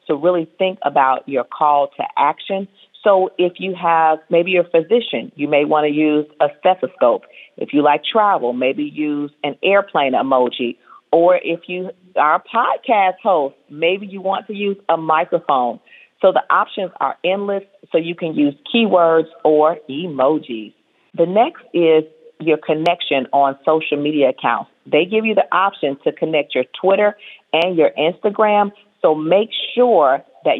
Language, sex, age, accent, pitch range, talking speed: English, female, 40-59, American, 150-185 Hz, 160 wpm